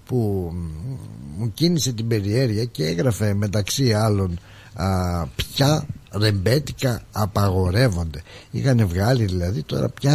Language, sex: Greek, male